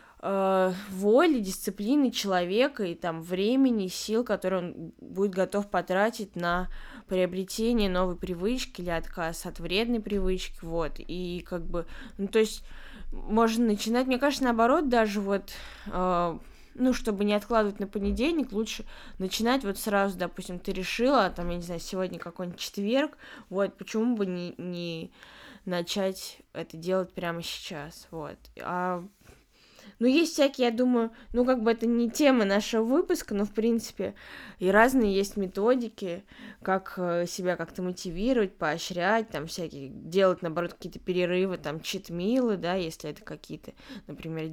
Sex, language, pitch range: female, Russian, 180-225 Hz